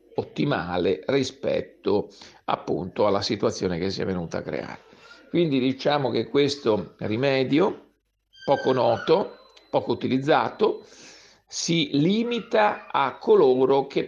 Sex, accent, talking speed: male, native, 105 wpm